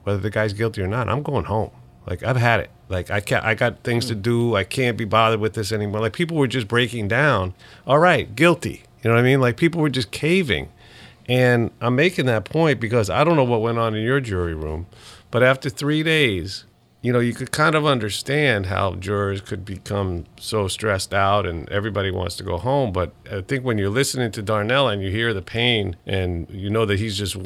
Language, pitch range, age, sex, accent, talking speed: English, 95-125 Hz, 50-69, male, American, 230 wpm